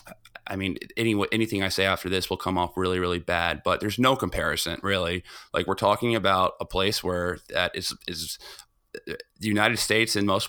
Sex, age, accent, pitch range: male, 30-49, American, 95-115 Hz